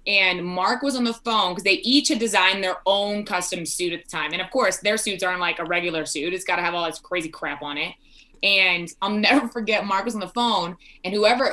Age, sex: 20-39, female